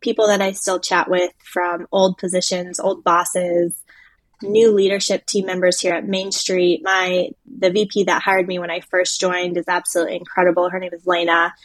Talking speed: 185 wpm